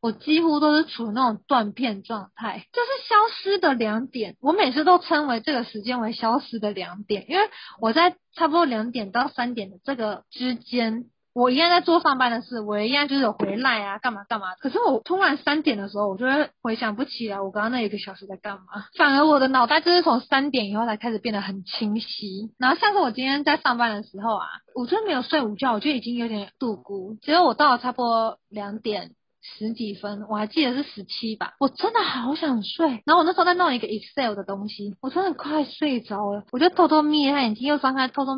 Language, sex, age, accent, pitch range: Chinese, female, 20-39, native, 215-290 Hz